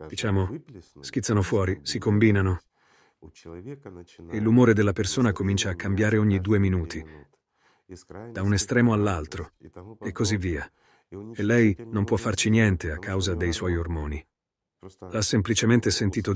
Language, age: Italian, 40-59